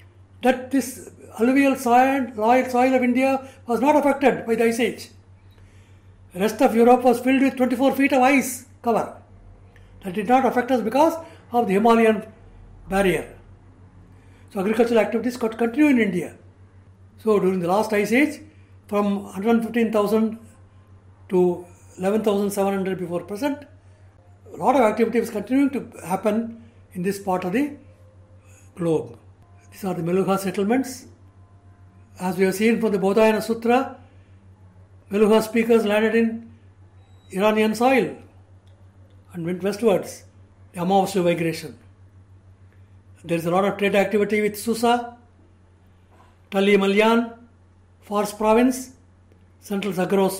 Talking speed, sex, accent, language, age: 130 wpm, male, Indian, English, 60-79